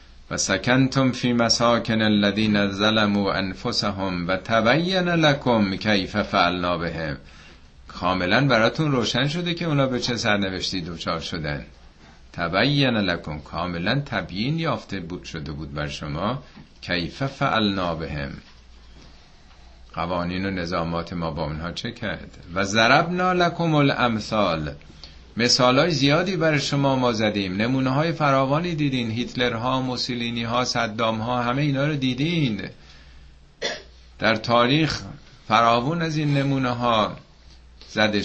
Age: 50-69